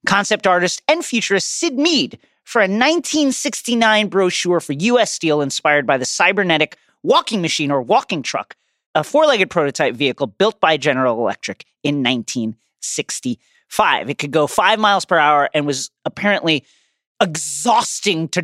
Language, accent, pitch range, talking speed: English, American, 145-210 Hz, 145 wpm